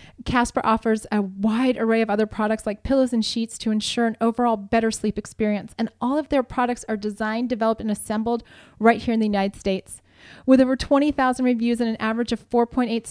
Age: 30-49